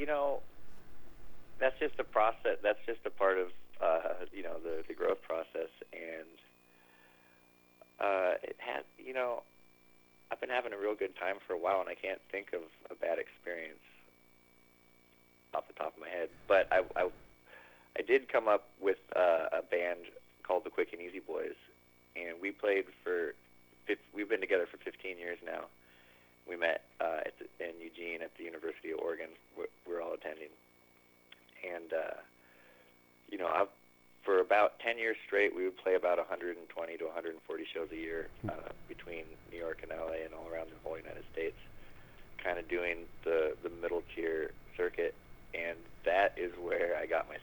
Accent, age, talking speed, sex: American, 30-49, 170 wpm, male